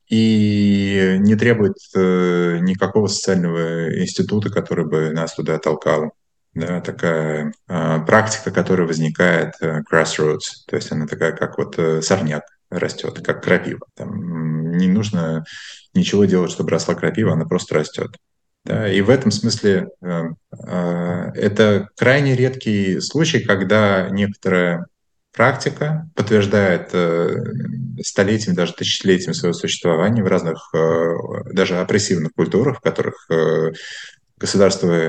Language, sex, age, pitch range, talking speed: Russian, male, 20-39, 80-105 Hz, 120 wpm